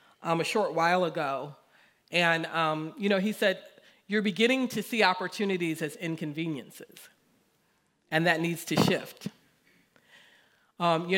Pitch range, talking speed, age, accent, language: 165-235 Hz, 135 wpm, 40-59, American, English